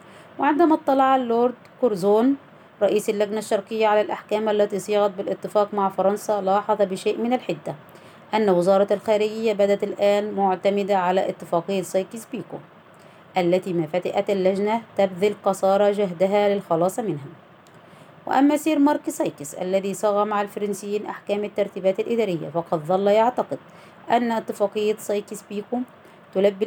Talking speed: 125 wpm